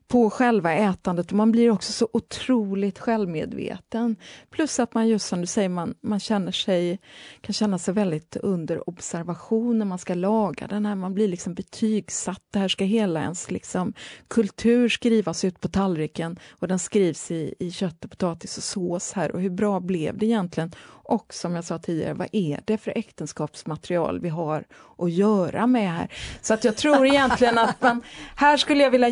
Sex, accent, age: female, Swedish, 30-49